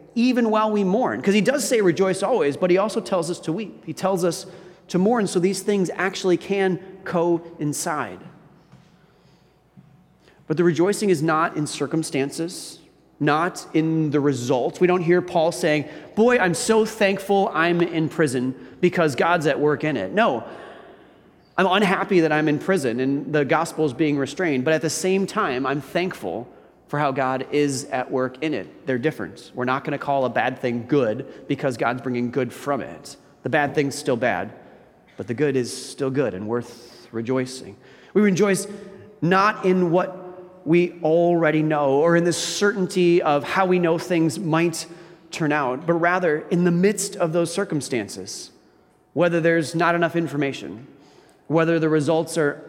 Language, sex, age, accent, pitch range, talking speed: English, male, 30-49, American, 145-185 Hz, 175 wpm